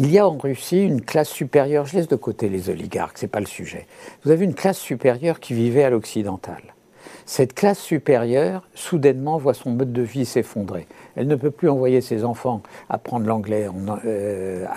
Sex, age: male, 60-79